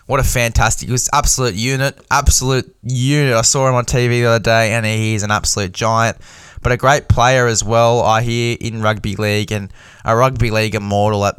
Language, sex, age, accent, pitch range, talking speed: English, male, 10-29, Australian, 100-125 Hz, 210 wpm